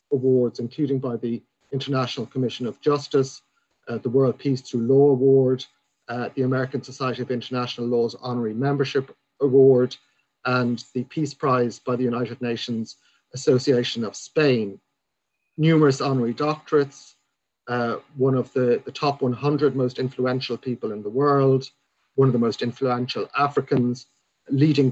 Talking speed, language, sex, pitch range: 140 wpm, English, male, 125-140 Hz